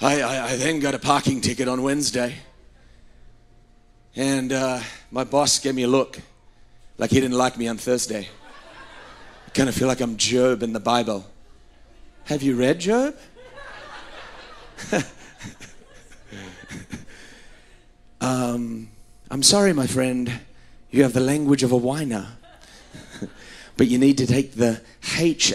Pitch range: 115-135 Hz